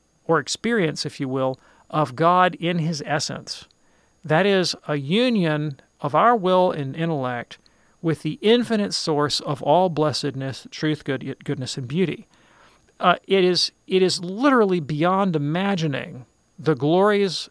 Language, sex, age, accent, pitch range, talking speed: English, male, 40-59, American, 145-180 Hz, 130 wpm